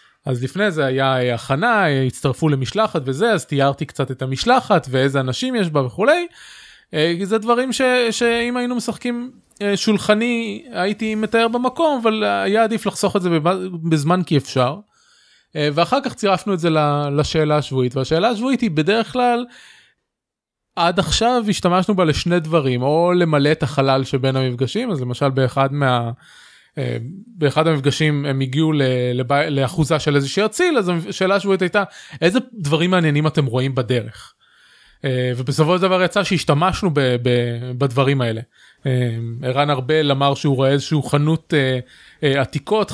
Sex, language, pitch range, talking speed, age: male, Hebrew, 135-200 Hz, 150 wpm, 20-39